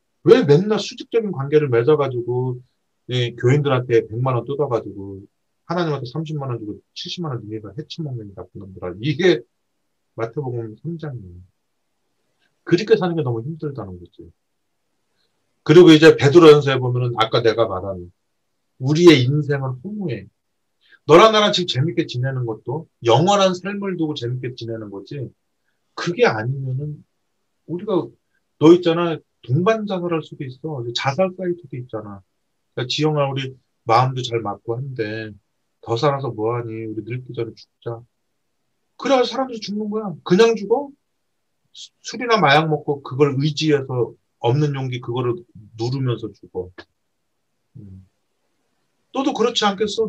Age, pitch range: 40-59, 115-165 Hz